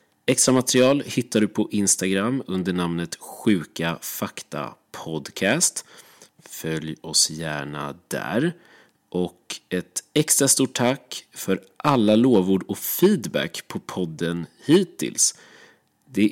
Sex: male